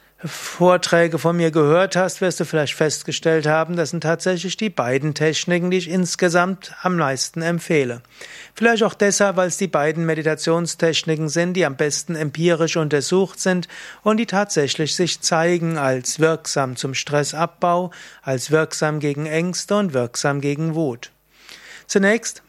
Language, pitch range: German, 150-180 Hz